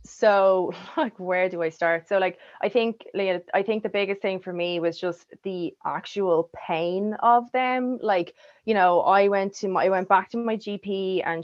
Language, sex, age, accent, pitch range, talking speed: English, female, 20-39, Irish, 175-215 Hz, 200 wpm